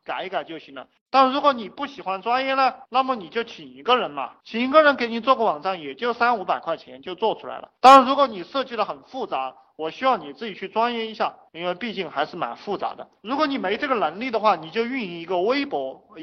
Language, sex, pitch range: Chinese, male, 175-255 Hz